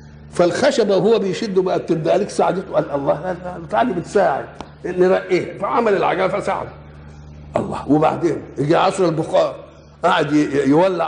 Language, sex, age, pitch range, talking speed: Arabic, male, 60-79, 140-195 Hz, 125 wpm